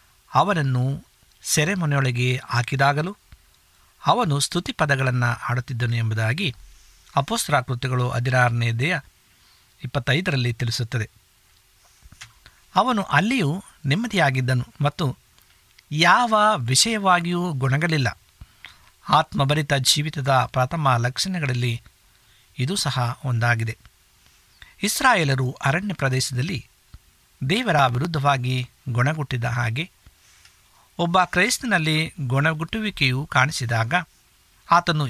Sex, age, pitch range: male, 60-79, 125-175 Hz